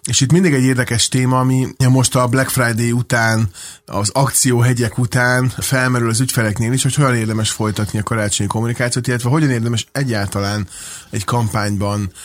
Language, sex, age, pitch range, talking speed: Hungarian, male, 30-49, 105-125 Hz, 160 wpm